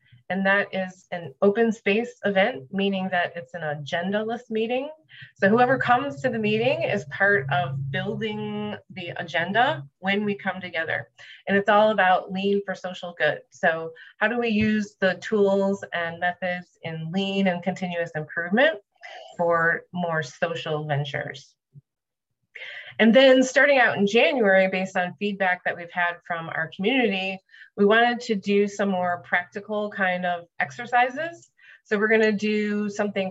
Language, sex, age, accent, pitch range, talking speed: English, female, 30-49, American, 175-215 Hz, 155 wpm